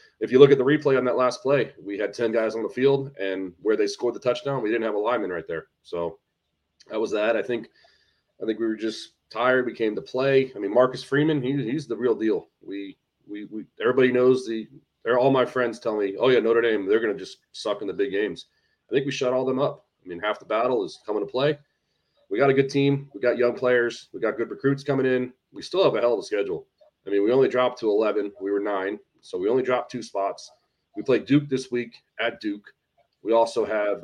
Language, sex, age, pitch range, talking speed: English, male, 30-49, 115-145 Hz, 255 wpm